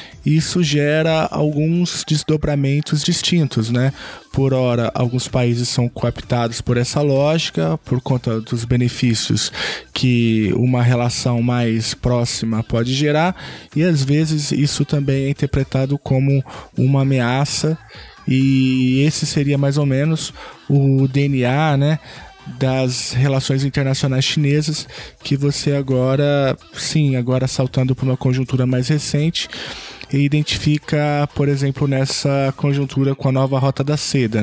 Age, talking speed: 20-39, 125 wpm